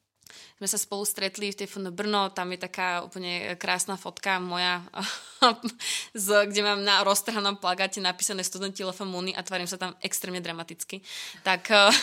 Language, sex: Czech, female